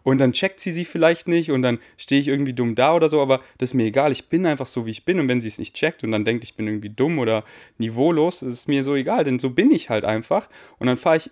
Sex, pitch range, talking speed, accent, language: male, 115-140 Hz, 300 wpm, German, German